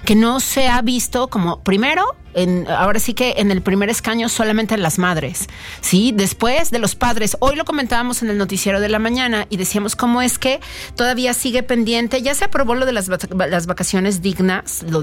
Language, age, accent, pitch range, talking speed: Spanish, 40-59, Mexican, 195-265 Hz, 200 wpm